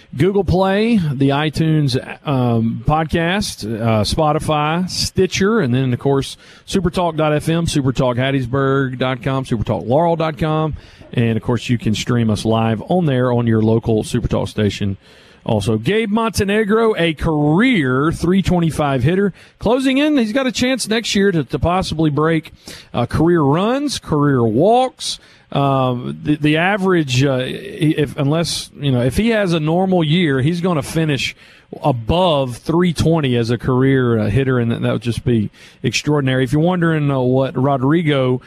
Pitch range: 130-175 Hz